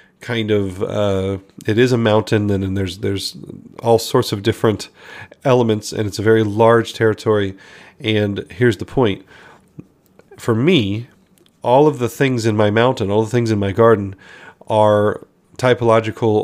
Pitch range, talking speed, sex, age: 100-115 Hz, 155 wpm, male, 40-59